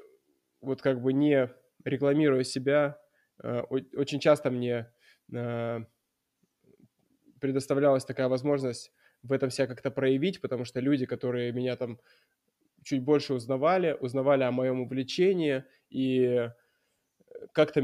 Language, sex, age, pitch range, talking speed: Russian, male, 20-39, 130-150 Hz, 110 wpm